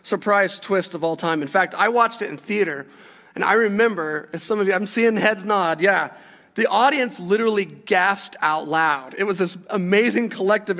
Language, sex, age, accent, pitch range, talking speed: English, male, 30-49, American, 185-250 Hz, 195 wpm